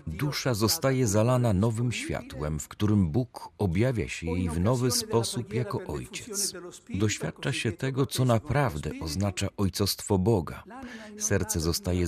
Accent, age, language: native, 40-59, Polish